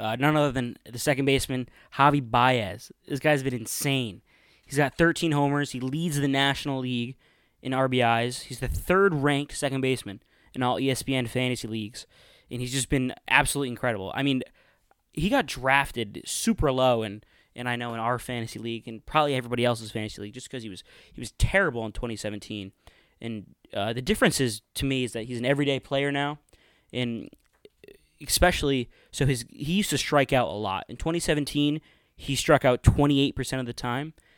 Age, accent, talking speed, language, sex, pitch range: 20-39, American, 185 wpm, English, male, 120-145 Hz